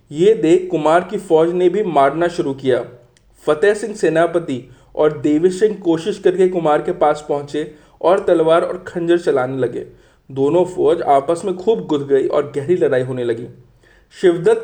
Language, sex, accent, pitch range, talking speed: Hindi, male, native, 135-205 Hz, 170 wpm